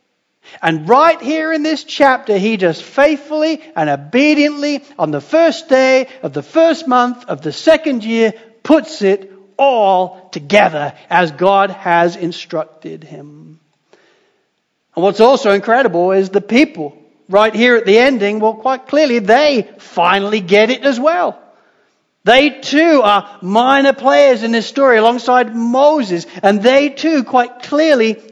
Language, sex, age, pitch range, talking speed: English, male, 60-79, 185-260 Hz, 145 wpm